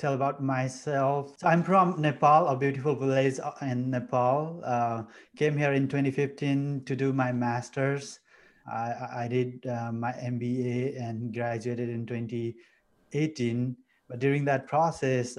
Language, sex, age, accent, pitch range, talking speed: English, male, 30-49, Japanese, 115-135 Hz, 135 wpm